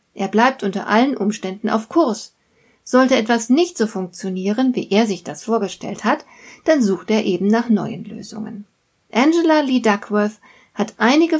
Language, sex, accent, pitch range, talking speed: German, female, German, 200-260 Hz, 160 wpm